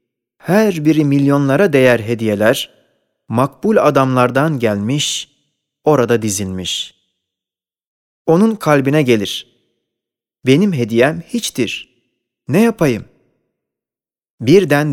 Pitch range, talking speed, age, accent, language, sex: 115-160 Hz, 75 wpm, 30-49, native, Turkish, male